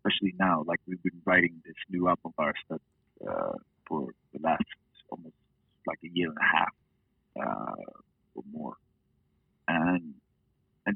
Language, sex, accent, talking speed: English, male, American, 155 wpm